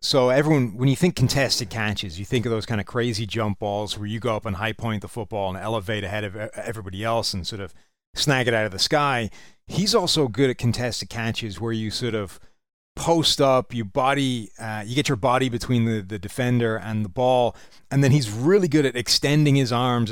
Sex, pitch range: male, 110-140 Hz